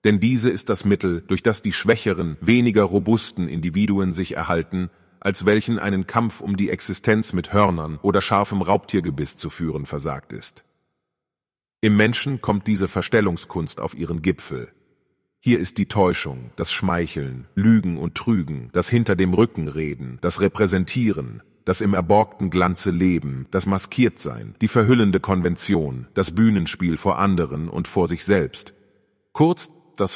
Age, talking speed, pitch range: 30-49, 140 wpm, 85-105 Hz